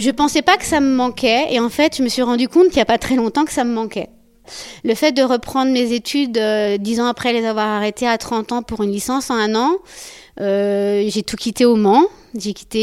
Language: French